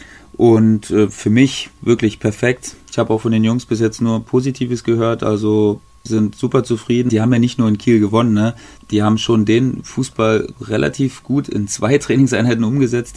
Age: 30-49